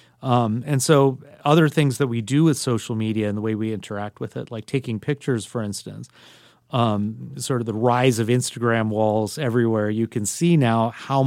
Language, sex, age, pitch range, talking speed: English, male, 40-59, 115-140 Hz, 195 wpm